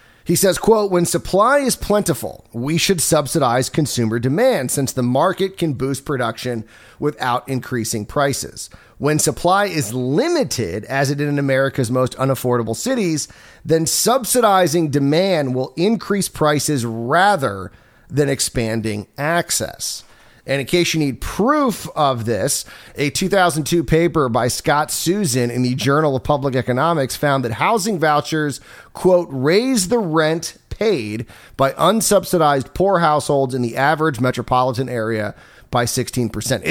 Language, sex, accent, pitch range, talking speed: English, male, American, 125-170 Hz, 135 wpm